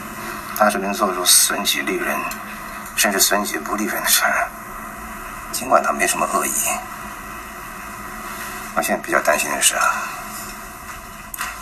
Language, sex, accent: Chinese, male, native